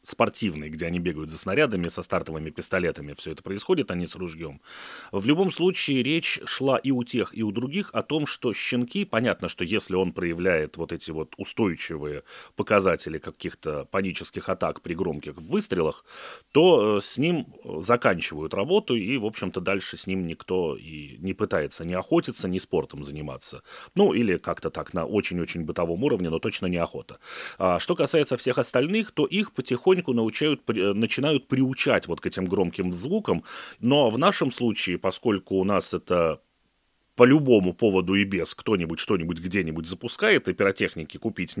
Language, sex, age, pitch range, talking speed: Russian, male, 30-49, 85-130 Hz, 165 wpm